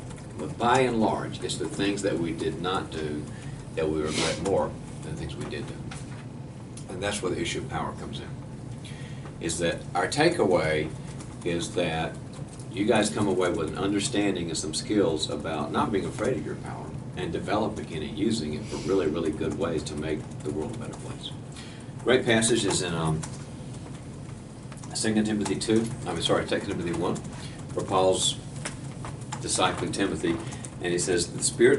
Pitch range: 90-130 Hz